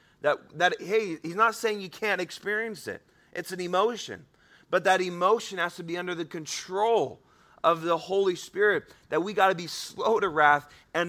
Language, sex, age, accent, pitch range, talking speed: English, male, 30-49, American, 165-210 Hz, 190 wpm